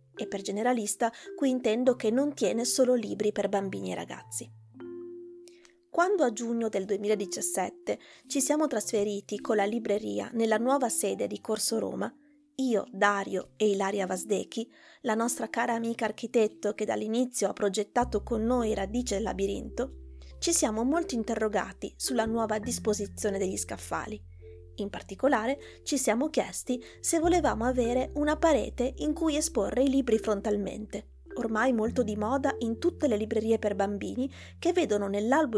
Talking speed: 150 wpm